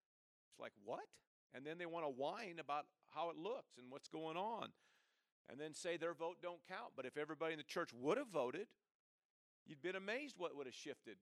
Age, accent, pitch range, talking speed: 50-69, American, 125-170 Hz, 210 wpm